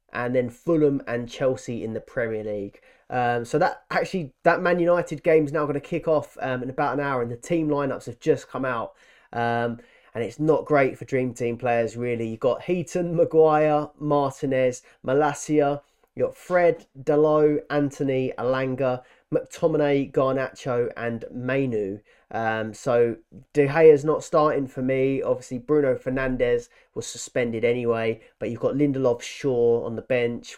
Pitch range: 120-155 Hz